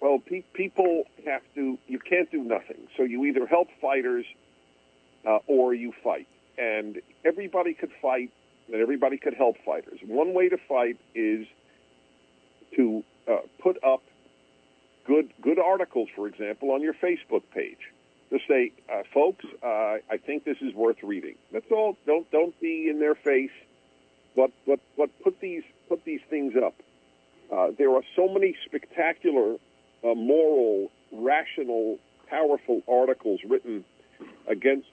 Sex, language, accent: male, English, American